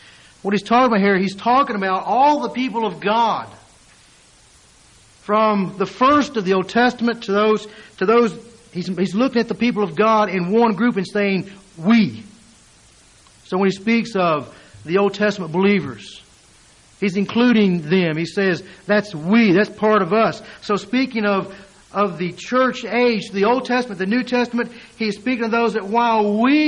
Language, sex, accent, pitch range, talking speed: English, male, American, 185-230 Hz, 175 wpm